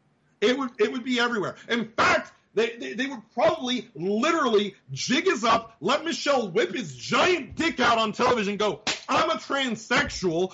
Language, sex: English, male